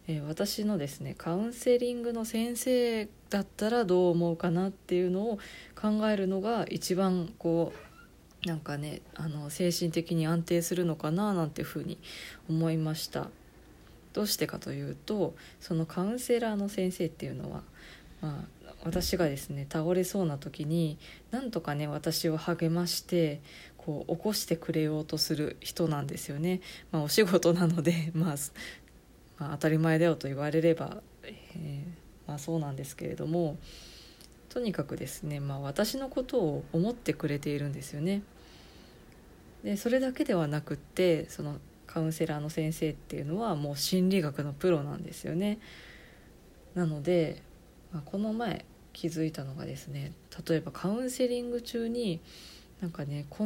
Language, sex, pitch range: Japanese, female, 155-195 Hz